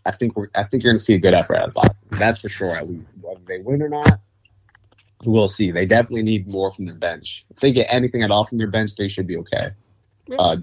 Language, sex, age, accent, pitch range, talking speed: English, male, 20-39, American, 100-115 Hz, 270 wpm